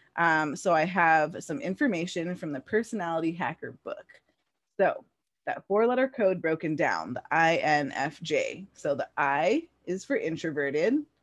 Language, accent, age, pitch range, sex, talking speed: English, American, 20-39, 155-205 Hz, female, 155 wpm